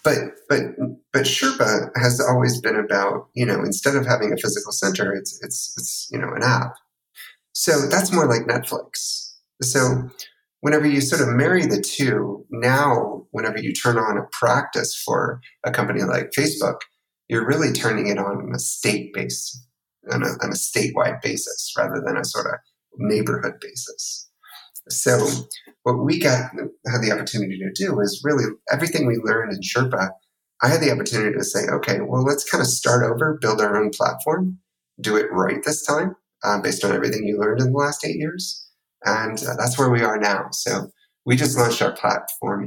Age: 30-49